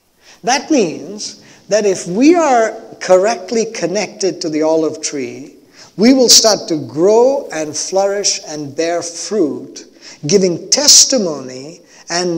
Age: 50-69